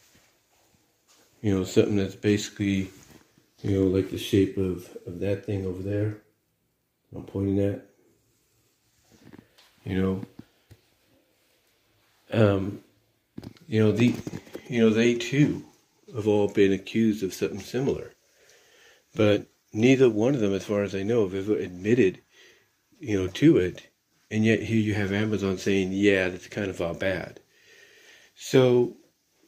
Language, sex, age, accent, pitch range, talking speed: English, male, 50-69, American, 95-110 Hz, 135 wpm